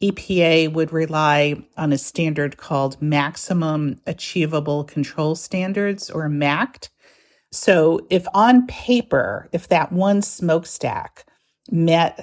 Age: 50-69